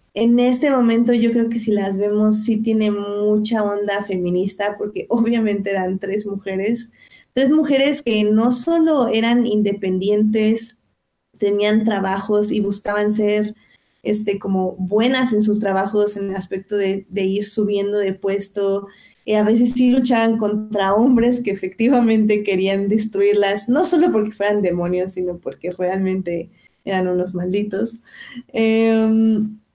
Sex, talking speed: female, 140 wpm